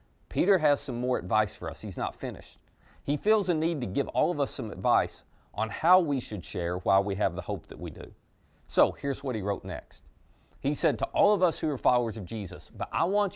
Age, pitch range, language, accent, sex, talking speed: 30-49, 100-155 Hz, English, American, male, 245 wpm